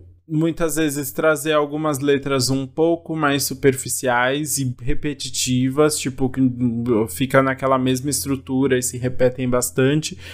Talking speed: 120 wpm